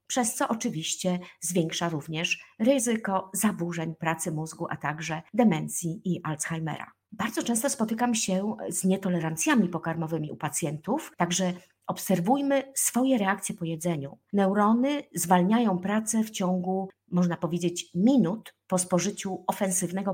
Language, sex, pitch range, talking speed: Polish, female, 175-230 Hz, 120 wpm